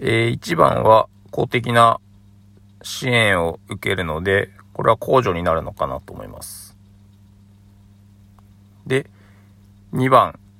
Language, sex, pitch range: Japanese, male, 100-110 Hz